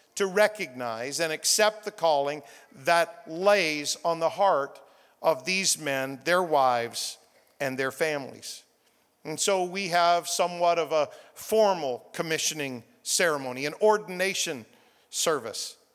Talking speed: 120 wpm